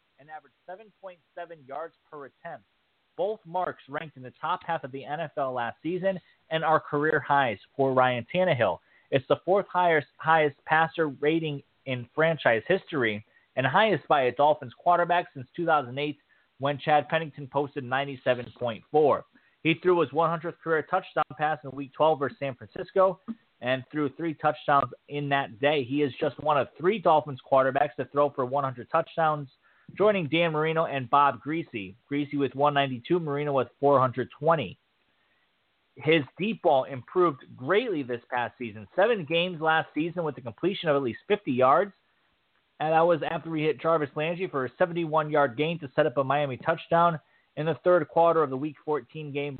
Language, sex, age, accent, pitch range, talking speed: English, male, 30-49, American, 140-165 Hz, 170 wpm